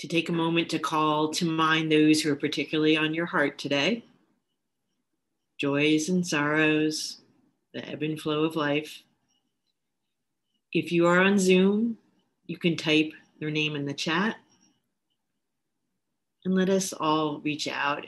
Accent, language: American, English